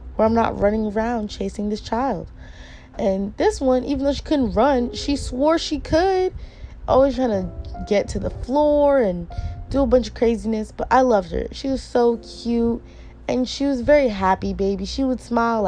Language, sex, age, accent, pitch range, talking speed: English, female, 20-39, American, 190-260 Hz, 190 wpm